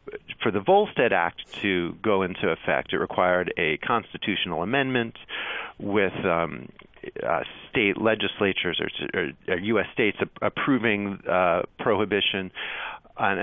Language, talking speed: English, 120 wpm